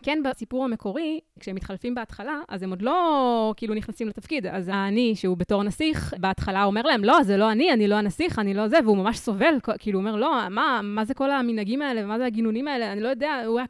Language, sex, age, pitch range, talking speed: Hebrew, female, 20-39, 185-235 Hz, 230 wpm